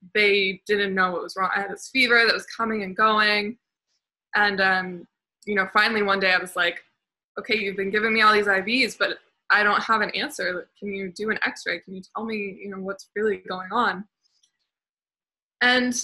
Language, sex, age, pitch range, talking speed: English, female, 20-39, 195-240 Hz, 205 wpm